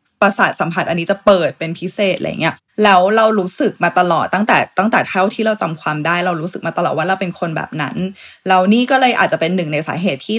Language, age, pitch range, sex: Thai, 20-39, 175-220 Hz, female